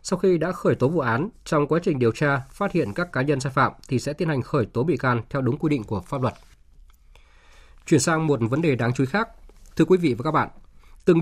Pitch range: 120-160 Hz